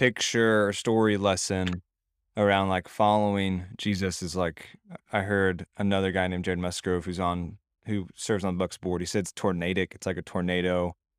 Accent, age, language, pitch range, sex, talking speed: American, 20-39, English, 90-105 Hz, male, 170 wpm